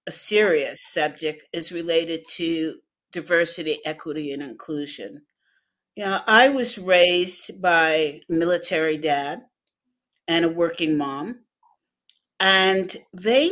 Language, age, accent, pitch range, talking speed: English, 50-69, American, 165-220 Hz, 100 wpm